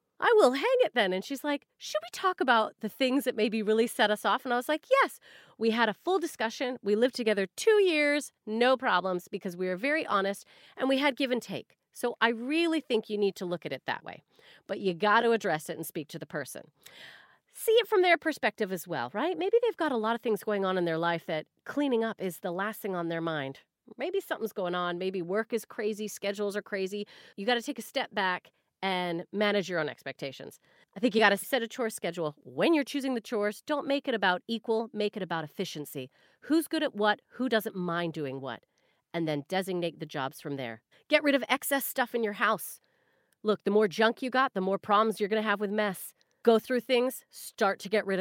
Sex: female